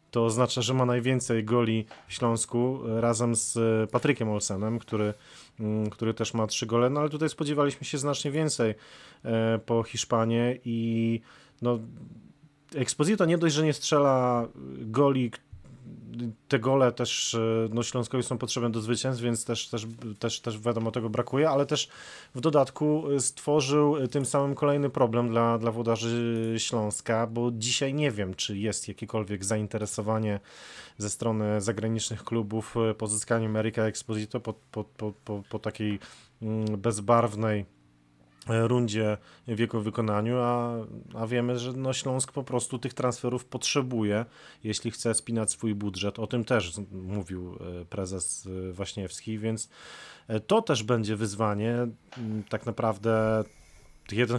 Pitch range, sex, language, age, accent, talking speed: 110-125 Hz, male, Polish, 30-49, native, 135 wpm